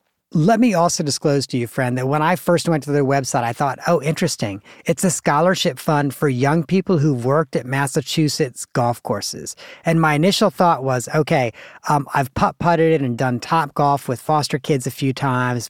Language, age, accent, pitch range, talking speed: English, 40-59, American, 130-165 Hz, 200 wpm